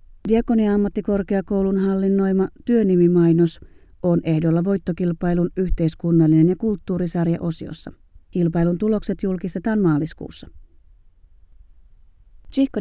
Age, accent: 40-59, native